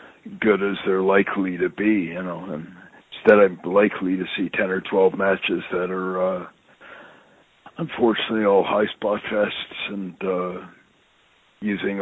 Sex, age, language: male, 60-79, English